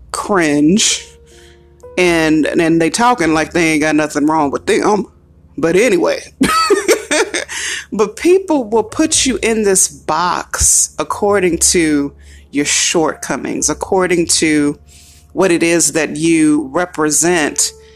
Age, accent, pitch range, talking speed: 30-49, American, 150-210 Hz, 120 wpm